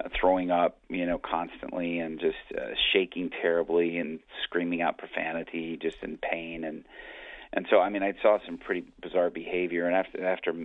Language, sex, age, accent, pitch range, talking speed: English, male, 40-59, American, 85-100 Hz, 175 wpm